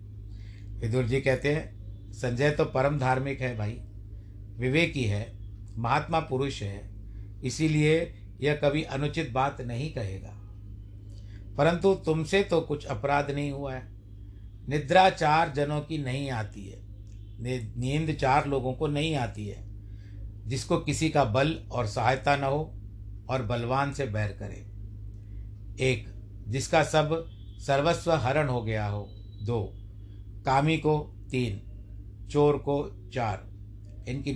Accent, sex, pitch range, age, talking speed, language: native, male, 105-145 Hz, 60-79, 130 wpm, Hindi